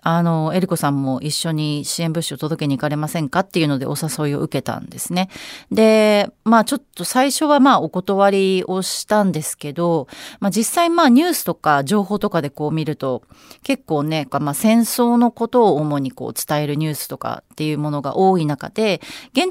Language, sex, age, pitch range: Japanese, female, 30-49, 150-215 Hz